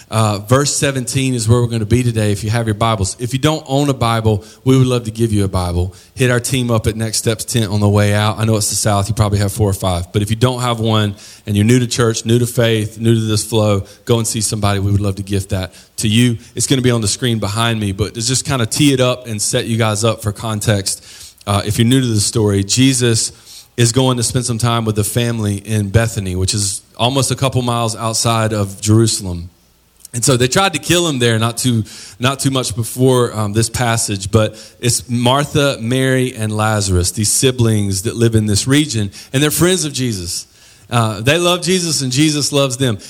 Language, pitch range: English, 105-125 Hz